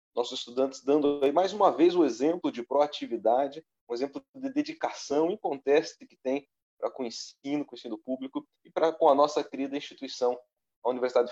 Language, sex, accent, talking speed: Portuguese, male, Brazilian, 190 wpm